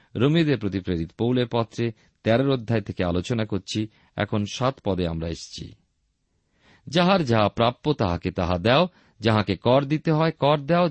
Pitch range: 100-155 Hz